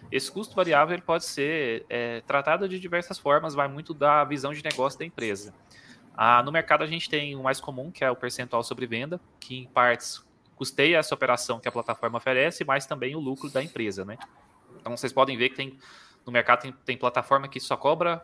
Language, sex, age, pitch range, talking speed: Portuguese, male, 20-39, 125-150 Hz, 215 wpm